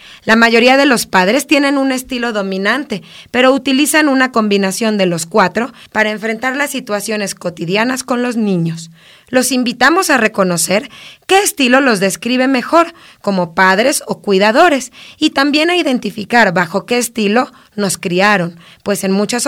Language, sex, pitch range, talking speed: Spanish, female, 200-275 Hz, 150 wpm